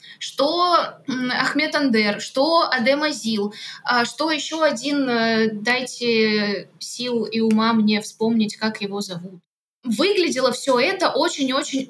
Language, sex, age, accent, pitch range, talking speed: Russian, female, 20-39, native, 225-285 Hz, 110 wpm